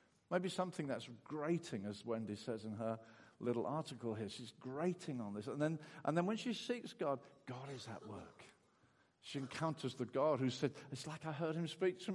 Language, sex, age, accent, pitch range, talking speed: English, male, 50-69, British, 140-175 Hz, 200 wpm